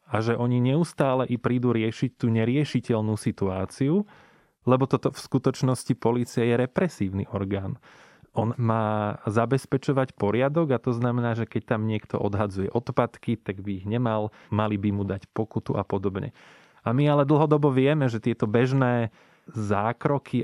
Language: Slovak